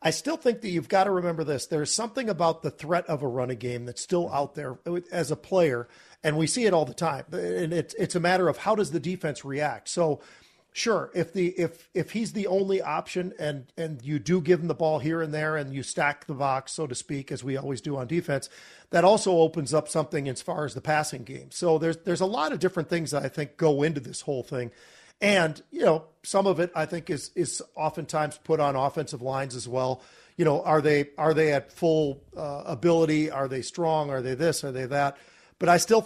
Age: 40-59